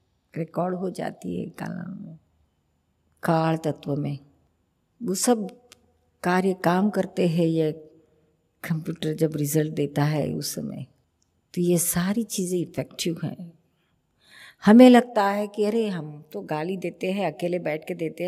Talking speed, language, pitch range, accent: 140 wpm, Hindi, 160-200 Hz, native